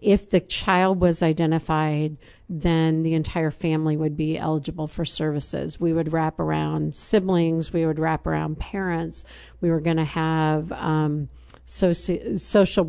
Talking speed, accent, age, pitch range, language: 140 wpm, American, 50-69, 155-175 Hz, English